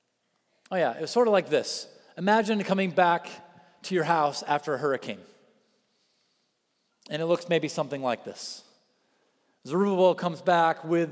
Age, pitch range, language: 40-59, 155-205 Hz, English